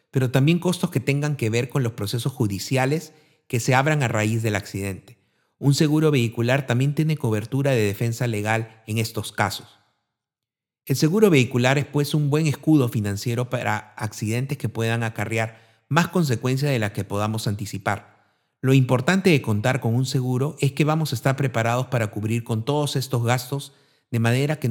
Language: Spanish